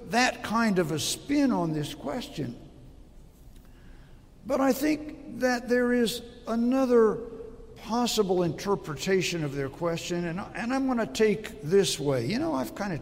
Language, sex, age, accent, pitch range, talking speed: English, male, 60-79, American, 155-230 Hz, 145 wpm